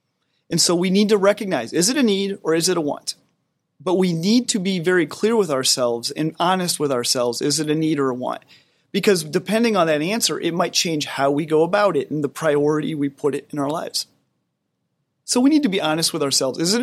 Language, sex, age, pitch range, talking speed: English, male, 30-49, 145-190 Hz, 240 wpm